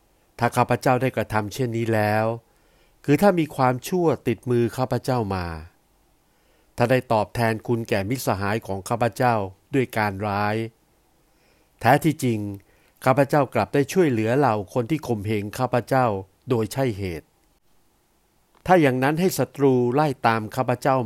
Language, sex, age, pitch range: Thai, male, 60-79, 105-135 Hz